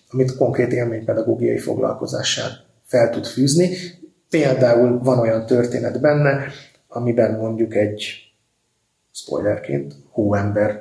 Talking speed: 100 wpm